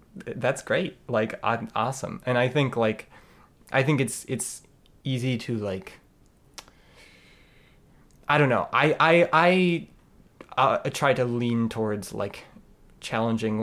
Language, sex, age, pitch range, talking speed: English, male, 20-39, 110-130 Hz, 125 wpm